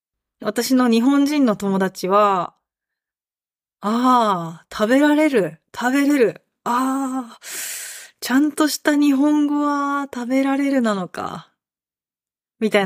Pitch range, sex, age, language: 195-255 Hz, female, 20-39, Japanese